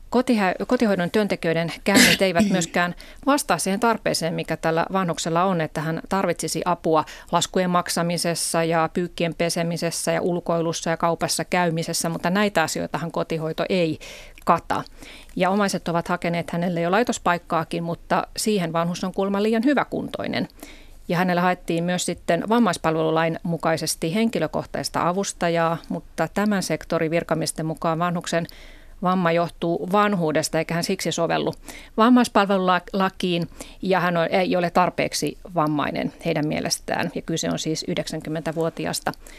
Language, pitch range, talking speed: Finnish, 165-195 Hz, 125 wpm